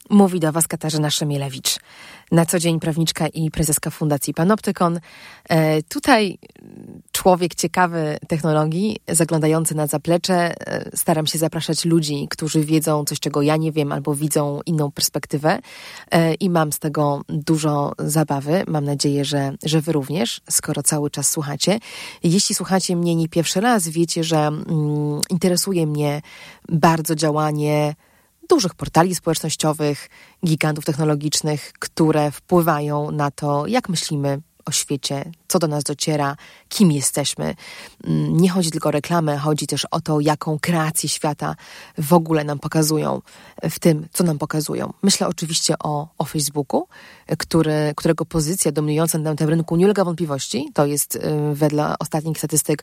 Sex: female